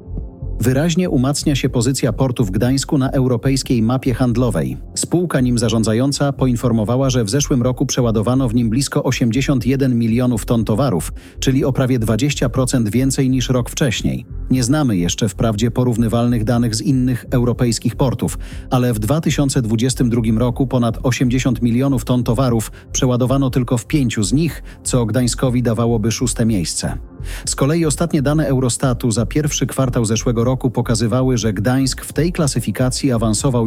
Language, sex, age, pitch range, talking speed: Polish, male, 40-59, 115-135 Hz, 145 wpm